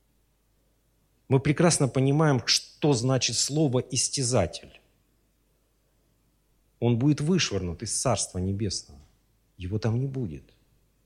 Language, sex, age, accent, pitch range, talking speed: Russian, male, 40-59, native, 100-140 Hz, 90 wpm